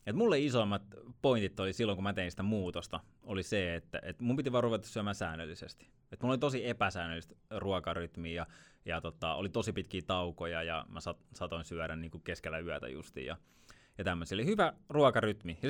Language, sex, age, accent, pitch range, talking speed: Finnish, male, 20-39, native, 90-115 Hz, 185 wpm